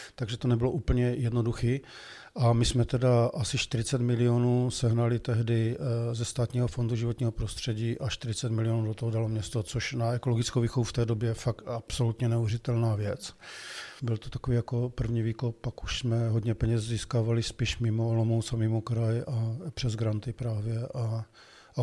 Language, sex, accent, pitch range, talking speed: Czech, male, native, 115-125 Hz, 170 wpm